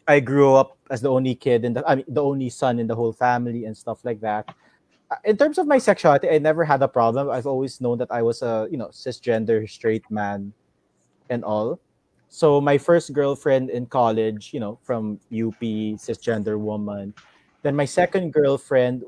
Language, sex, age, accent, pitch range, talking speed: English, male, 20-39, Filipino, 115-150 Hz, 190 wpm